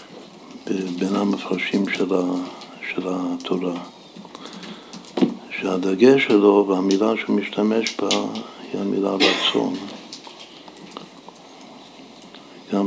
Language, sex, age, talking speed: Hebrew, male, 60-79, 65 wpm